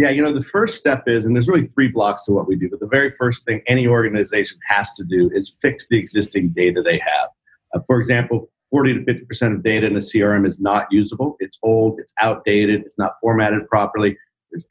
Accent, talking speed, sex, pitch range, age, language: American, 235 wpm, male, 110-130 Hz, 50-69, English